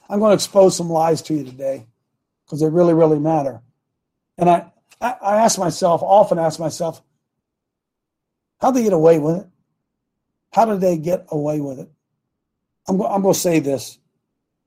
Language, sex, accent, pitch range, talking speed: English, male, American, 150-185 Hz, 170 wpm